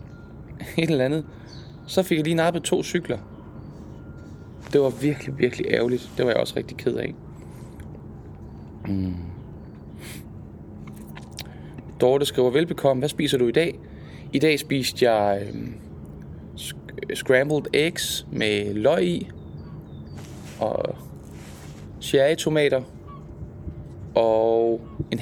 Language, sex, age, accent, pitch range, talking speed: Danish, male, 20-39, native, 105-150 Hz, 105 wpm